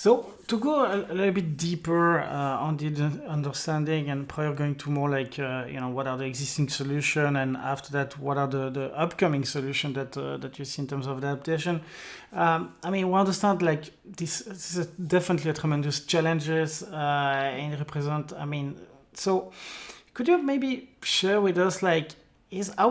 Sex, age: male, 30-49